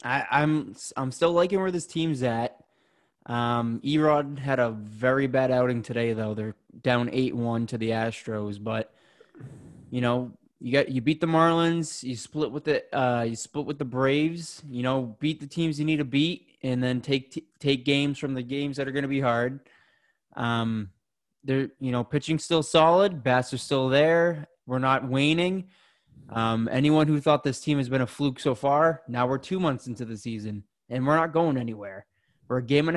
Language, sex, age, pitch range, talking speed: English, male, 20-39, 125-155 Hz, 200 wpm